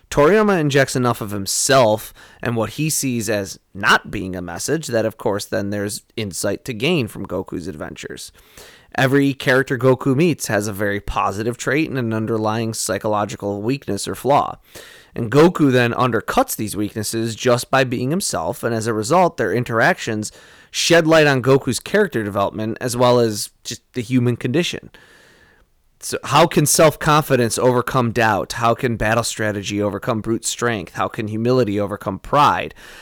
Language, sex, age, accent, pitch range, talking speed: English, male, 20-39, American, 105-135 Hz, 160 wpm